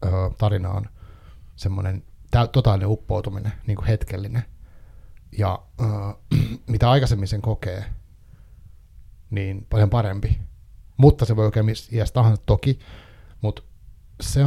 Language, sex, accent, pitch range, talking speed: Finnish, male, native, 100-120 Hz, 105 wpm